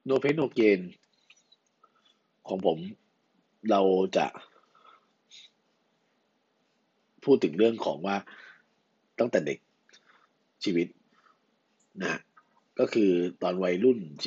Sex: male